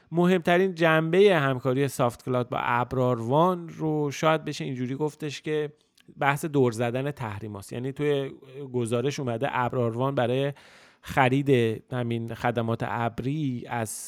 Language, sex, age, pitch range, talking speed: Persian, male, 30-49, 115-140 Hz, 125 wpm